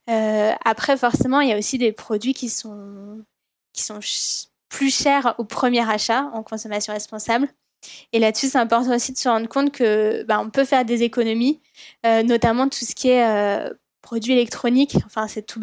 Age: 10-29